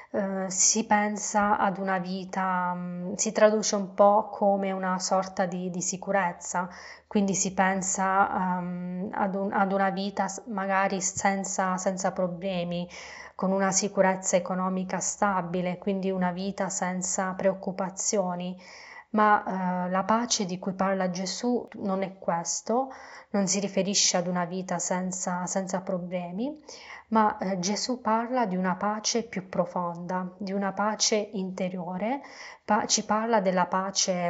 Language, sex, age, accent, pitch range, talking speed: Italian, female, 20-39, native, 185-210 Hz, 130 wpm